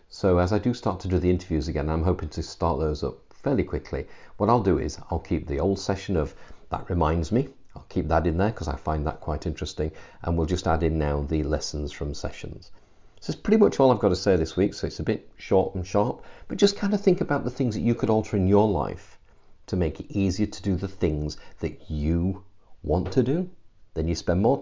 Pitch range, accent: 80-100 Hz, British